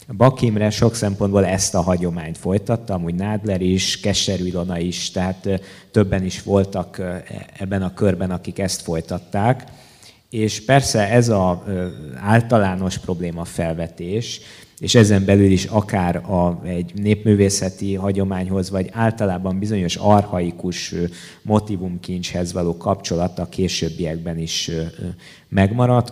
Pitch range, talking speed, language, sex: 90-100 Hz, 110 wpm, Hungarian, male